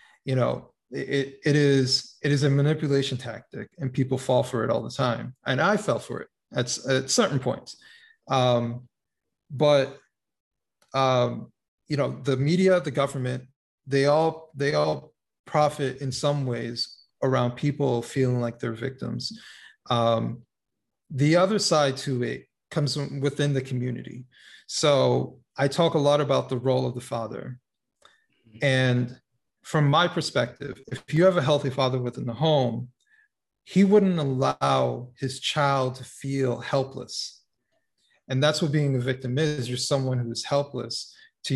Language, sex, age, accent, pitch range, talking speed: English, male, 30-49, American, 125-150 Hz, 150 wpm